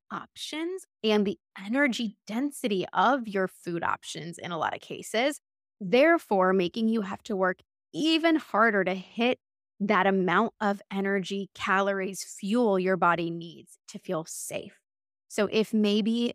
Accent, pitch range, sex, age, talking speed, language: American, 195-230 Hz, female, 20-39, 145 wpm, English